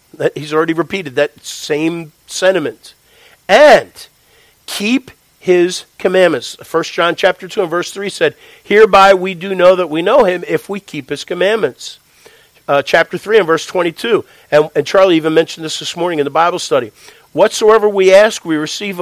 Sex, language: male, English